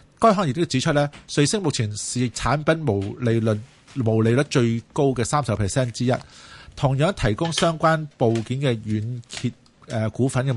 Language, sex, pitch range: Chinese, male, 115-145 Hz